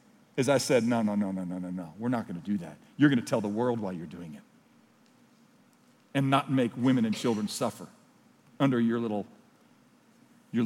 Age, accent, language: 50-69, American, English